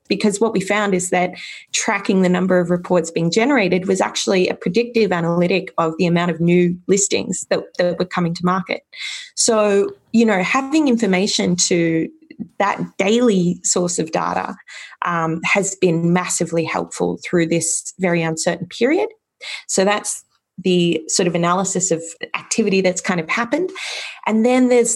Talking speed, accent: 160 wpm, Australian